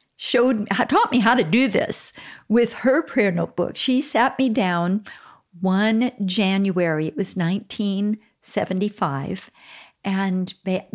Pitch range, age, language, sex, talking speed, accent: 195-255 Hz, 50-69, English, female, 120 wpm, American